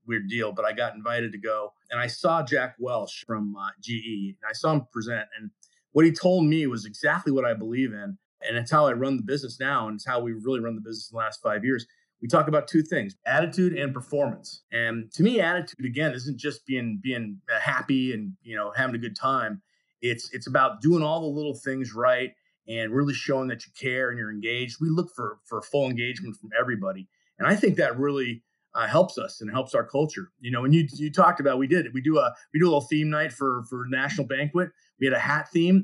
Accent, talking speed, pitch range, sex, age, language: American, 240 wpm, 120-155 Hz, male, 30-49, English